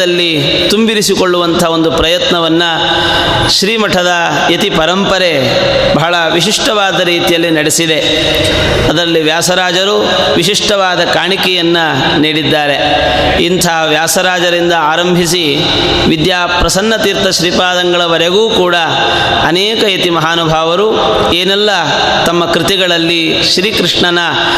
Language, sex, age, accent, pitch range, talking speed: Kannada, male, 30-49, native, 165-185 Hz, 70 wpm